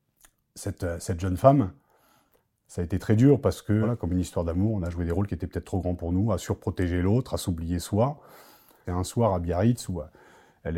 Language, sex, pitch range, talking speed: French, male, 95-115 Hz, 230 wpm